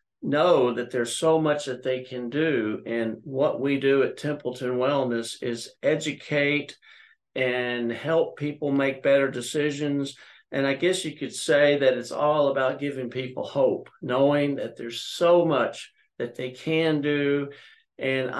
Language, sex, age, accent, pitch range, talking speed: English, male, 50-69, American, 125-145 Hz, 155 wpm